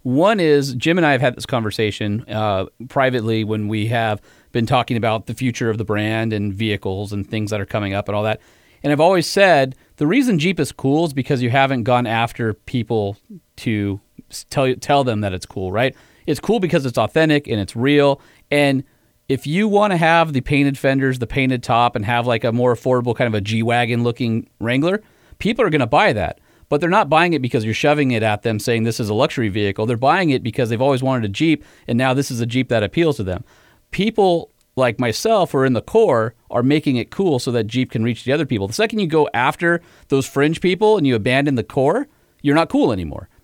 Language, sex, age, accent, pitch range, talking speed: English, male, 40-59, American, 115-155 Hz, 230 wpm